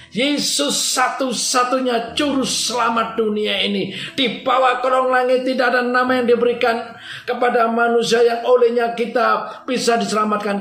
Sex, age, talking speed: male, 50-69, 125 wpm